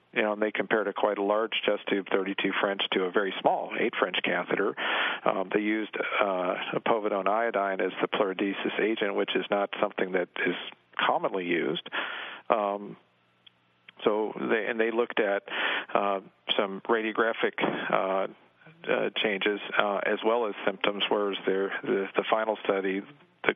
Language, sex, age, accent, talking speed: English, male, 50-69, American, 165 wpm